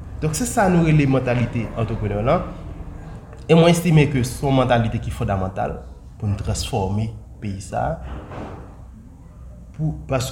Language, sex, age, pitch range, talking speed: English, male, 30-49, 105-150 Hz, 140 wpm